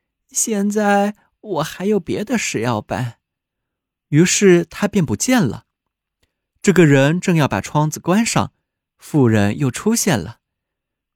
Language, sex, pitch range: Chinese, male, 125-200 Hz